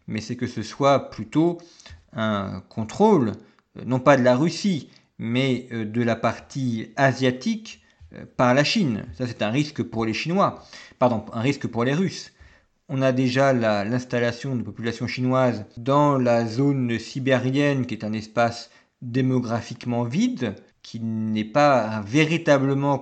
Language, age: French, 50-69